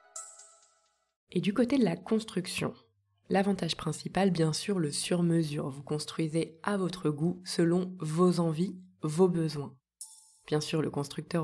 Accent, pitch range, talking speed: French, 150-185 Hz, 135 wpm